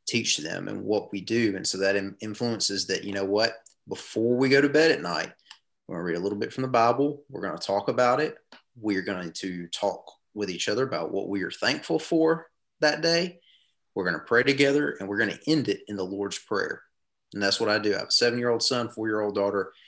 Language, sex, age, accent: English, male, 30-49, American